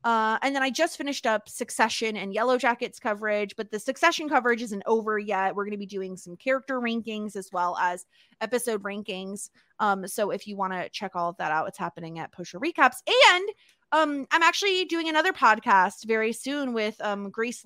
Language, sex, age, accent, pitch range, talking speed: English, female, 20-39, American, 205-265 Hz, 205 wpm